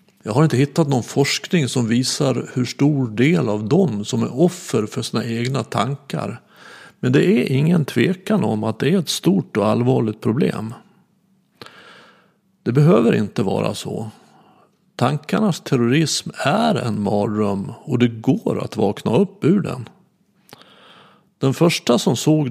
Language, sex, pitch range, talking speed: Swedish, male, 115-175 Hz, 150 wpm